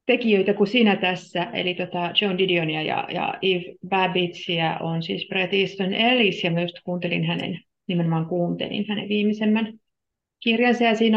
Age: 30-49